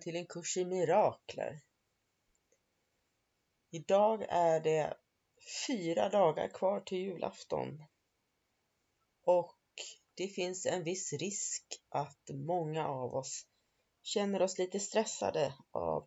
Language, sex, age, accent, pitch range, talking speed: Swedish, female, 30-49, native, 150-185 Hz, 105 wpm